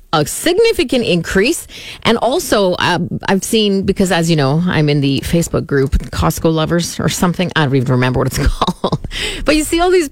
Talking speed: 195 wpm